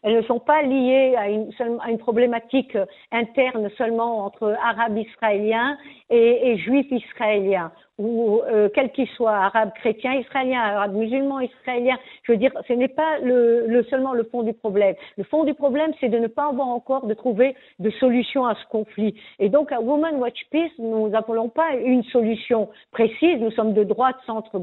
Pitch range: 220-265 Hz